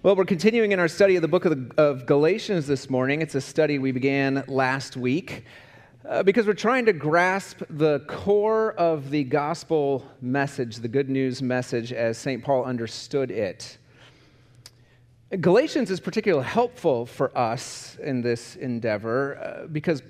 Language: English